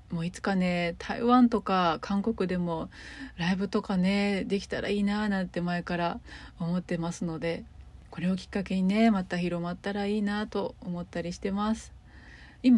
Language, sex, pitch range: Japanese, female, 175-225 Hz